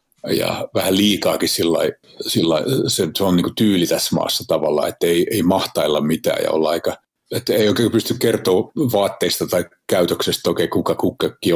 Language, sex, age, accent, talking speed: Finnish, male, 50-69, native, 165 wpm